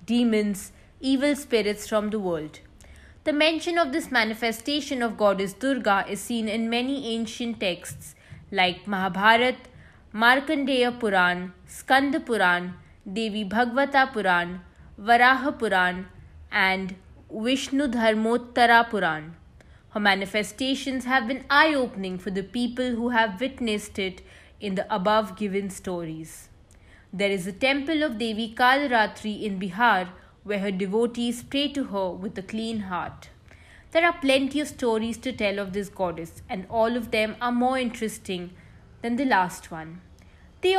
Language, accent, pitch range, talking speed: English, Indian, 190-250 Hz, 140 wpm